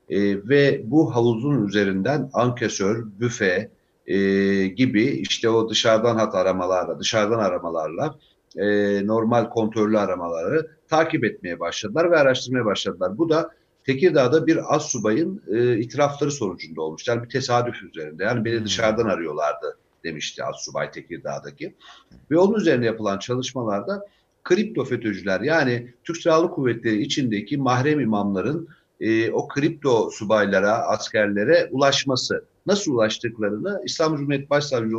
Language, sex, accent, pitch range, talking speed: Turkish, male, native, 110-160 Hz, 125 wpm